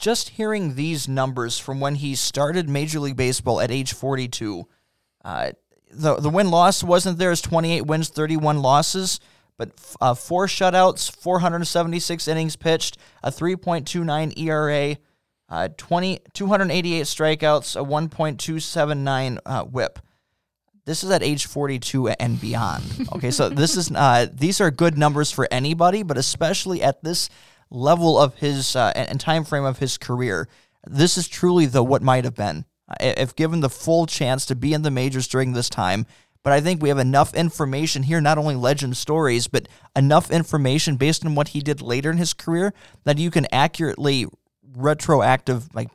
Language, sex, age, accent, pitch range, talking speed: English, male, 20-39, American, 130-165 Hz, 165 wpm